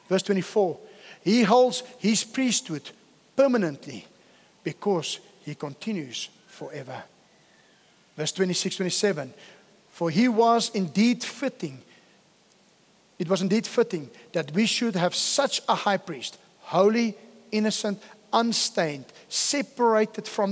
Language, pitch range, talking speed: English, 195-250 Hz, 105 wpm